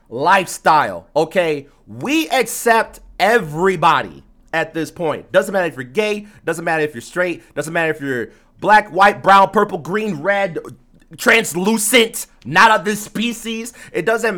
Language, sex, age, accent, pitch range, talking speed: English, male, 30-49, American, 165-235 Hz, 145 wpm